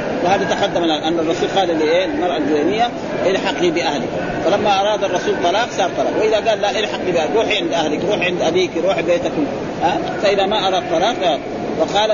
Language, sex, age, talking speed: Arabic, male, 40-59, 185 wpm